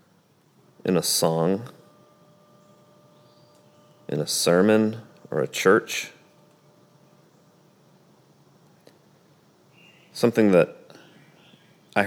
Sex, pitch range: male, 90-120 Hz